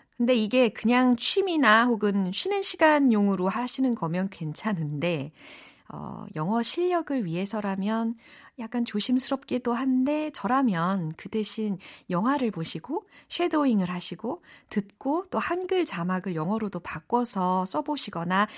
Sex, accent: female, native